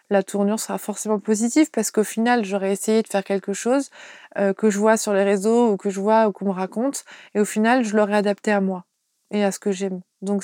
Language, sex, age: French, female, 20-39